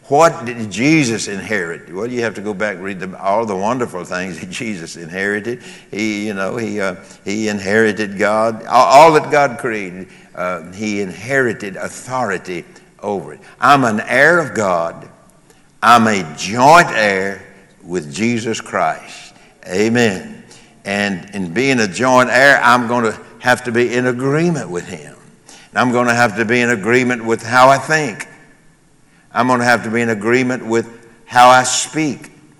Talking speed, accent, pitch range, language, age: 165 wpm, American, 100-125 Hz, English, 60-79